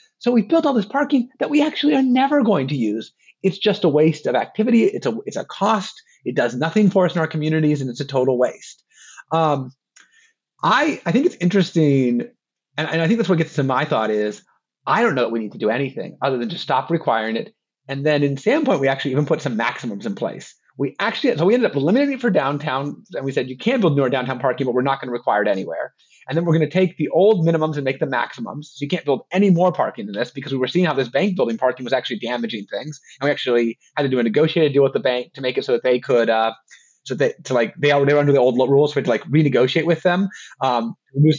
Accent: American